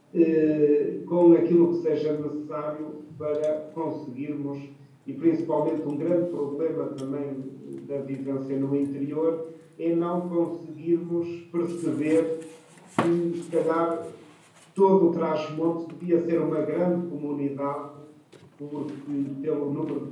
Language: Portuguese